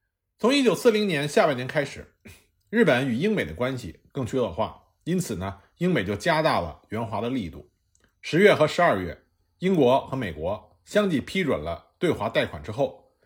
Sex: male